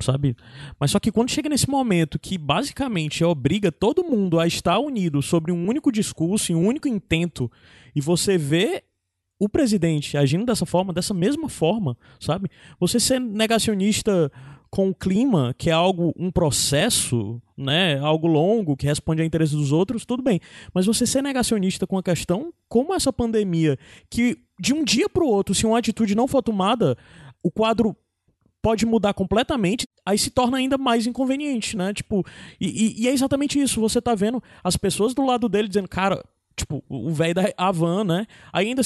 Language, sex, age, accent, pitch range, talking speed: Portuguese, male, 20-39, Brazilian, 160-225 Hz, 180 wpm